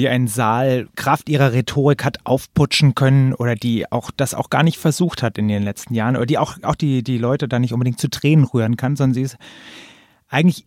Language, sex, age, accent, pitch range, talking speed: German, male, 30-49, German, 120-150 Hz, 225 wpm